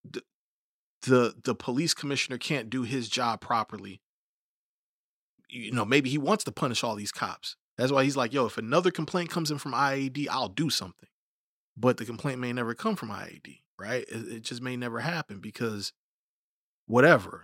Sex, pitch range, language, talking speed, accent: male, 115-145 Hz, English, 175 wpm, American